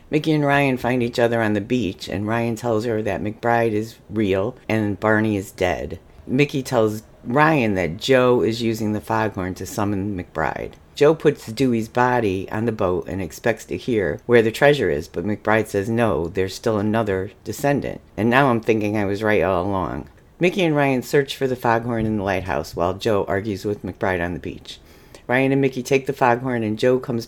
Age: 50-69